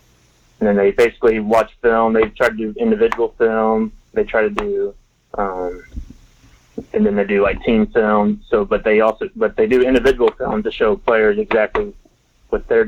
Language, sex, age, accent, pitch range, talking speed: English, male, 20-39, American, 100-130 Hz, 180 wpm